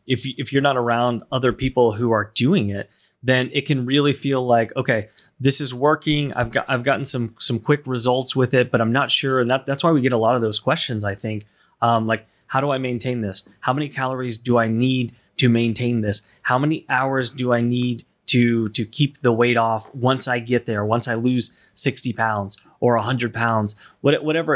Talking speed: 215 wpm